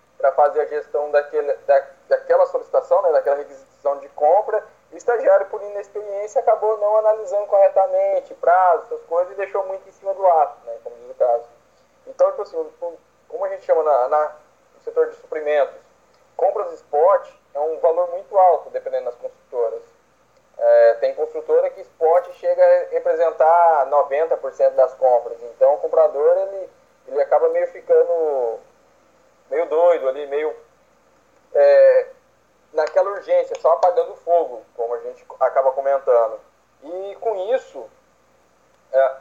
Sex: male